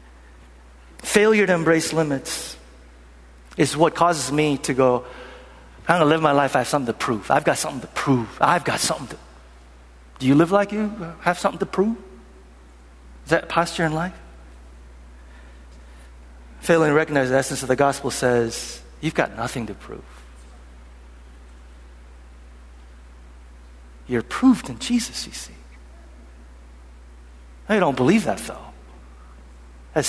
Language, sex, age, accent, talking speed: English, male, 50-69, American, 140 wpm